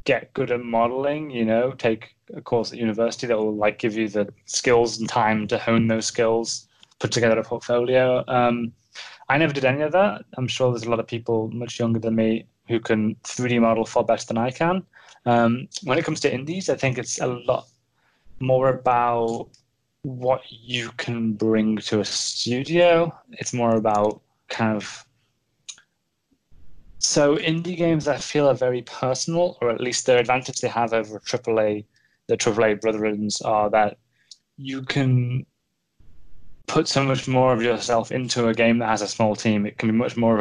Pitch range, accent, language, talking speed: 110-130 Hz, British, English, 185 wpm